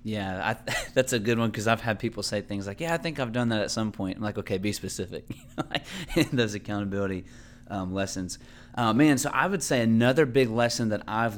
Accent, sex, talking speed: American, male, 220 wpm